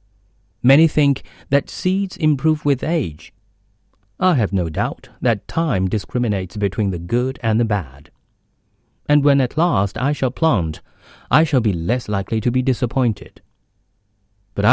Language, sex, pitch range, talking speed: English, male, 105-140 Hz, 145 wpm